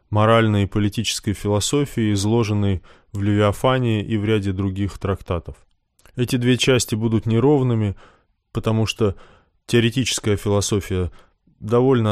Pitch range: 95-110 Hz